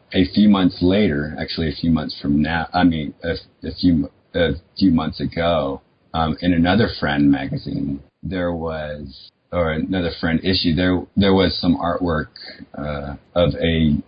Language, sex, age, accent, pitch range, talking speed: English, male, 30-49, American, 75-90 Hz, 160 wpm